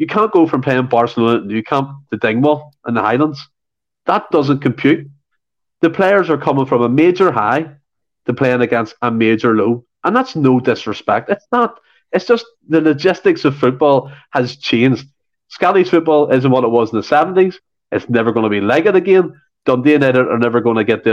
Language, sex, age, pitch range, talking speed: English, male, 30-49, 115-160 Hz, 200 wpm